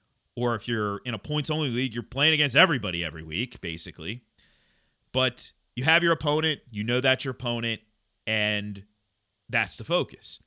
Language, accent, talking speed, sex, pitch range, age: English, American, 160 wpm, male, 115-170 Hz, 30-49